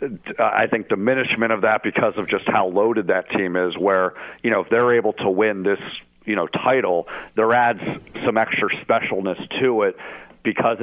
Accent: American